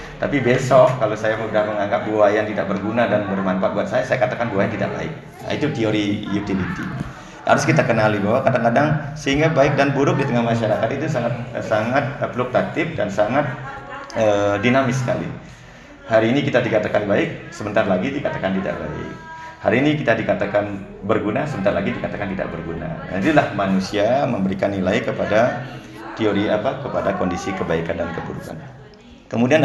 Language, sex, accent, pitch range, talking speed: Indonesian, male, native, 105-150 Hz, 160 wpm